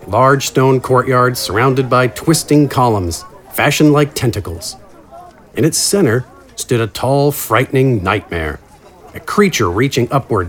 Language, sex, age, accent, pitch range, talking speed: English, male, 40-59, American, 110-145 Hz, 125 wpm